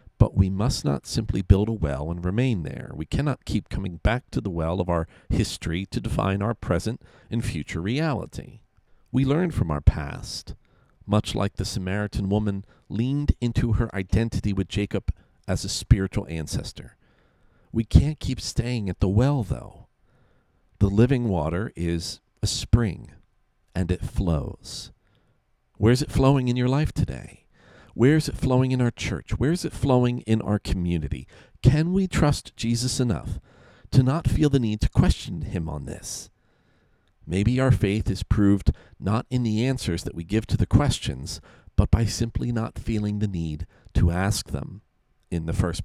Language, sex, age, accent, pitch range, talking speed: English, male, 50-69, American, 90-120 Hz, 170 wpm